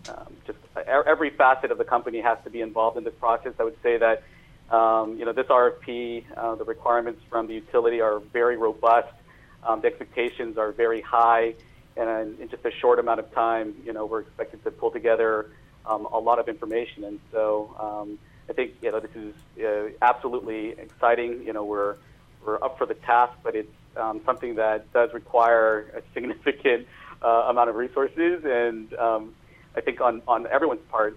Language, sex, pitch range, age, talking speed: English, male, 110-120 Hz, 40-59, 195 wpm